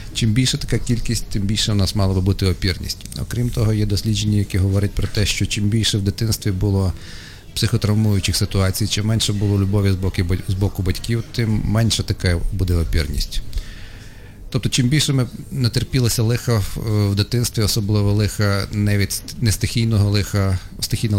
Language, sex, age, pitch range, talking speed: Ukrainian, male, 40-59, 95-110 Hz, 155 wpm